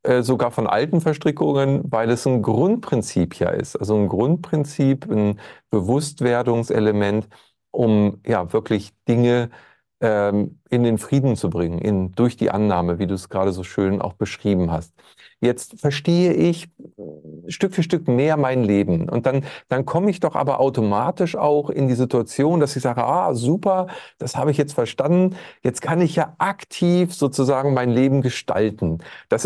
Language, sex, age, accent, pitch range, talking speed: German, male, 40-59, German, 115-155 Hz, 160 wpm